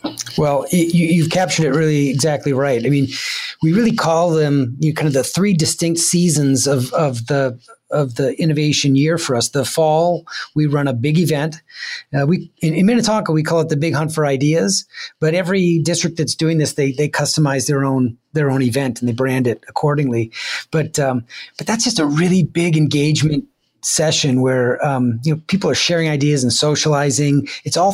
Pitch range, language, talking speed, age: 140-170 Hz, English, 200 wpm, 30-49